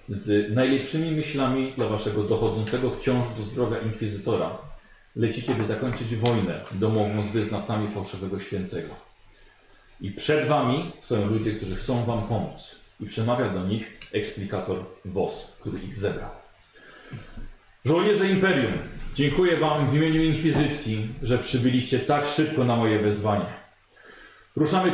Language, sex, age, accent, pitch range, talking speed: Polish, male, 40-59, native, 110-150 Hz, 125 wpm